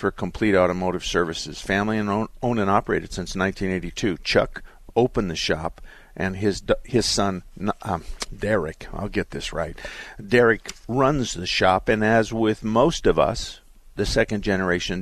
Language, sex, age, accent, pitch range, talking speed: English, male, 50-69, American, 90-110 Hz, 150 wpm